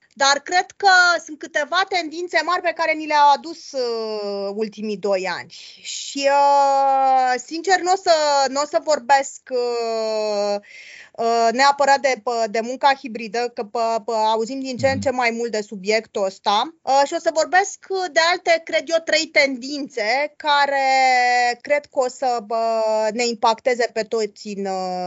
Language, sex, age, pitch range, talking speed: Romanian, female, 20-39, 225-300 Hz, 145 wpm